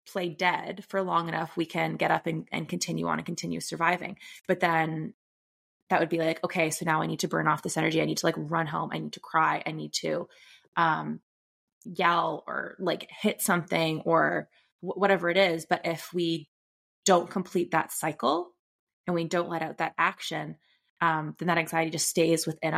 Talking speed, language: 205 wpm, English